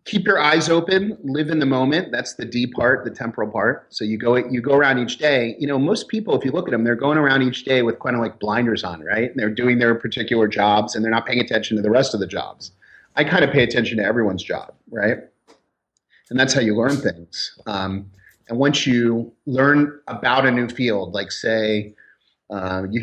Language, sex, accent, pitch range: English, male, American, 100-125 Hz